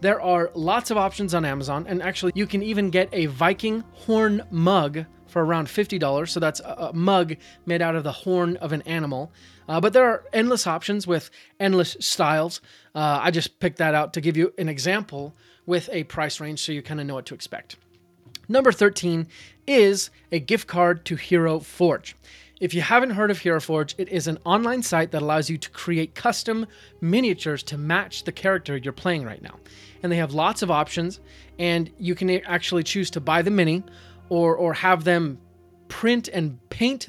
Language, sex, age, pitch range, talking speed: English, male, 30-49, 155-185 Hz, 195 wpm